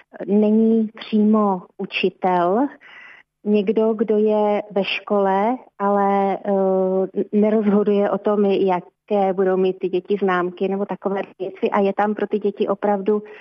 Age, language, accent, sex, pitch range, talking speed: 30-49, Czech, native, female, 190-205 Hz, 125 wpm